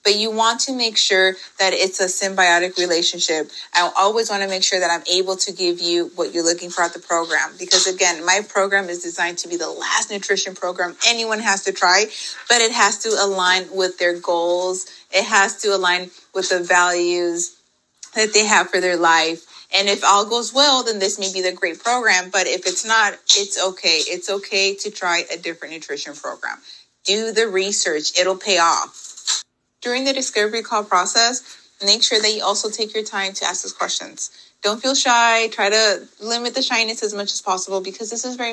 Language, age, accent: English, 30-49, American